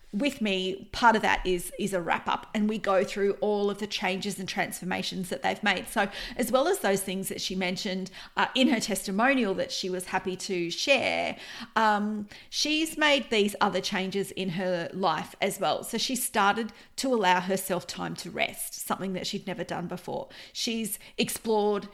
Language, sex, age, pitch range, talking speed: English, female, 40-59, 190-220 Hz, 190 wpm